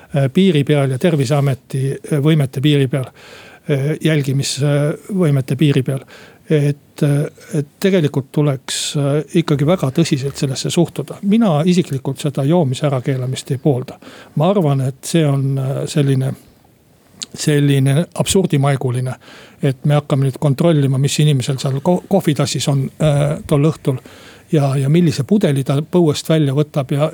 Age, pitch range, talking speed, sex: 60-79, 140-175 Hz, 125 wpm, male